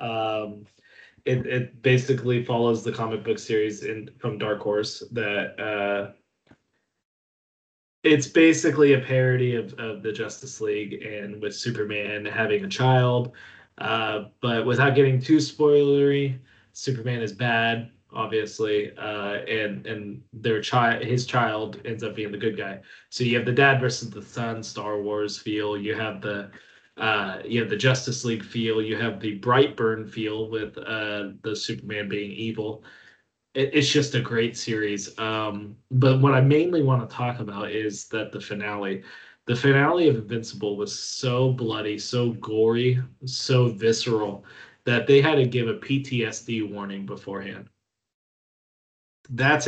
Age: 20-39